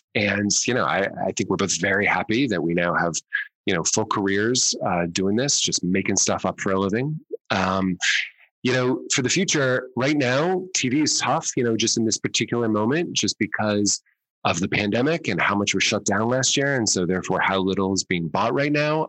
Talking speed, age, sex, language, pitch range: 215 wpm, 30-49, male, English, 95-125 Hz